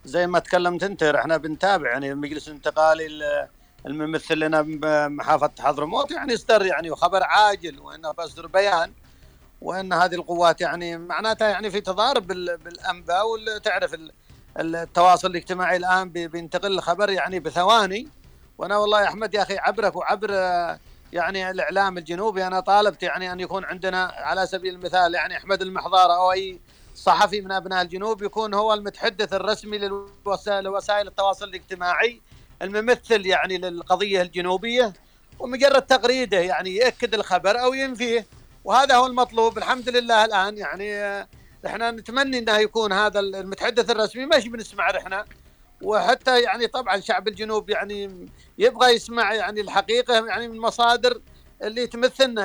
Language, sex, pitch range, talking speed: Arabic, male, 180-220 Hz, 135 wpm